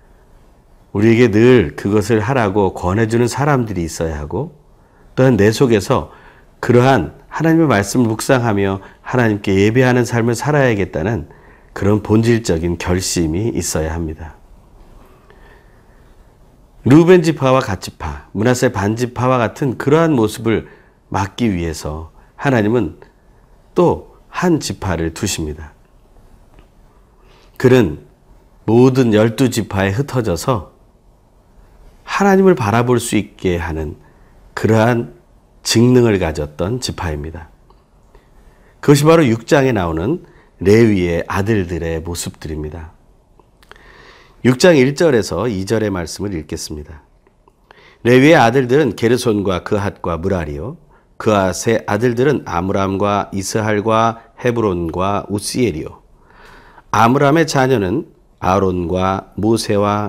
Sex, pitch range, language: male, 90-125 Hz, Korean